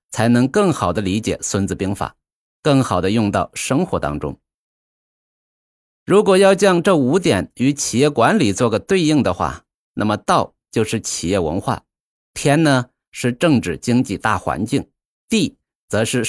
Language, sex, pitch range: Chinese, male, 100-150 Hz